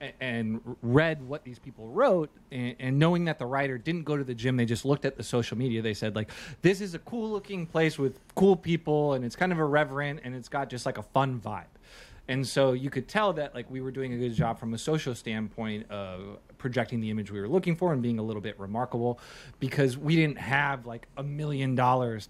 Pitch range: 115-145 Hz